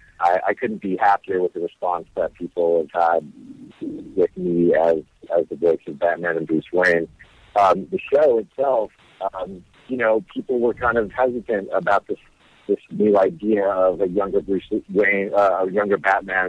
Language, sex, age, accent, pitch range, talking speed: English, male, 50-69, American, 90-130 Hz, 180 wpm